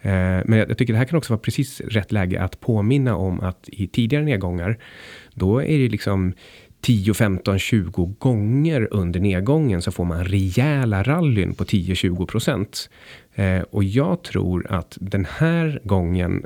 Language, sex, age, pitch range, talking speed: Swedish, male, 30-49, 95-125 Hz, 150 wpm